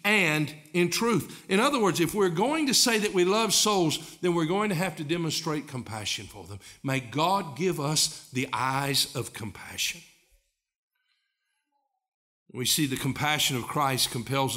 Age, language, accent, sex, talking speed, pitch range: 60-79, English, American, male, 165 wpm, 140-235 Hz